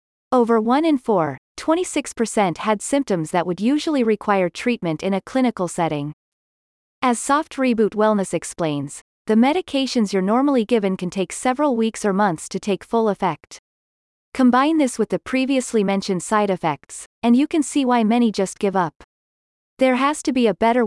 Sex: female